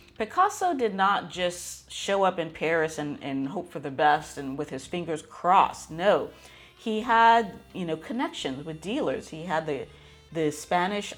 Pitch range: 155-220 Hz